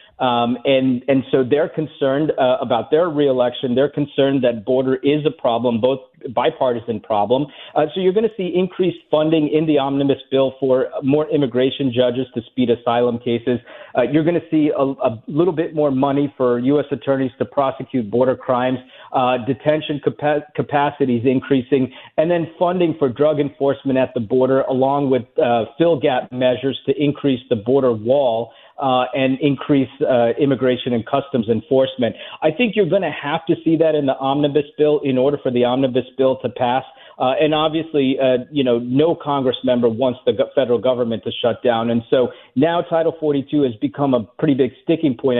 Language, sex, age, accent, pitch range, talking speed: English, male, 40-59, American, 125-145 Hz, 180 wpm